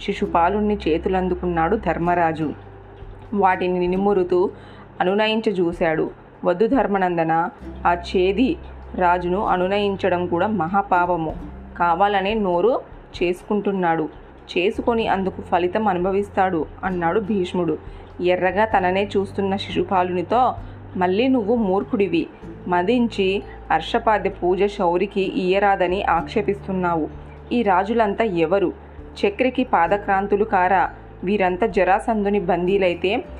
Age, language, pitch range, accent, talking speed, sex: 30-49, Telugu, 175-210 Hz, native, 80 wpm, female